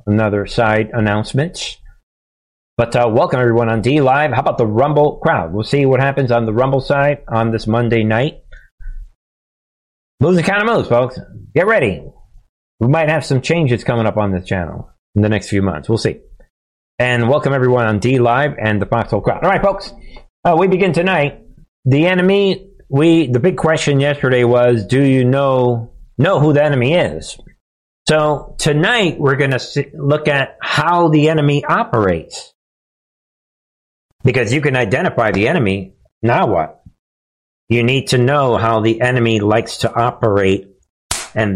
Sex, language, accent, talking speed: male, English, American, 165 wpm